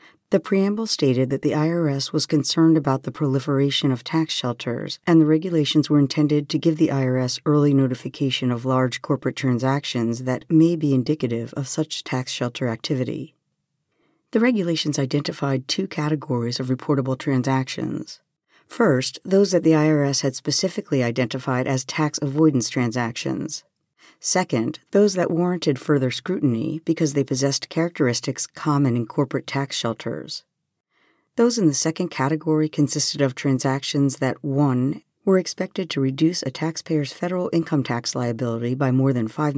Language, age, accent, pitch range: English, 50-69, American, 130-155 Hz